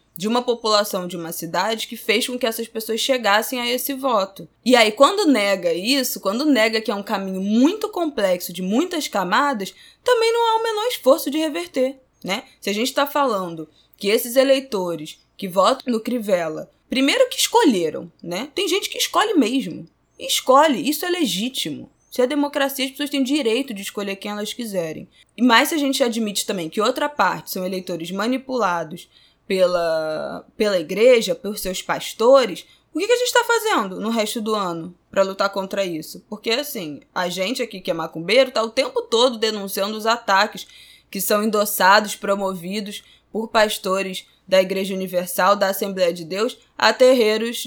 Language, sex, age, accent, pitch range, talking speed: Portuguese, female, 20-39, Brazilian, 195-270 Hz, 180 wpm